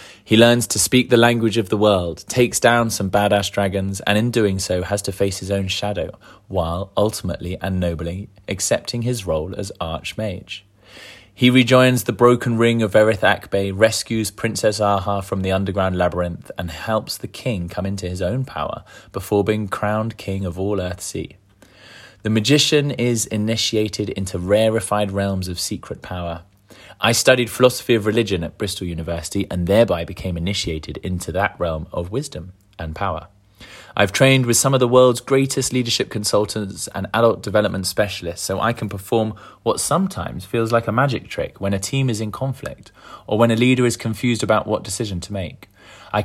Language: English